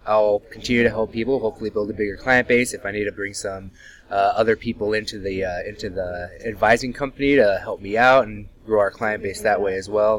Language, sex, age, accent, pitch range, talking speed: English, male, 20-39, American, 100-120 Hz, 235 wpm